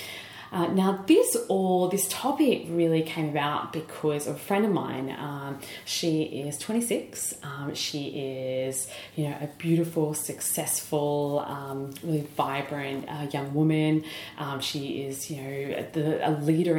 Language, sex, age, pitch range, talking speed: English, female, 30-49, 145-165 Hz, 145 wpm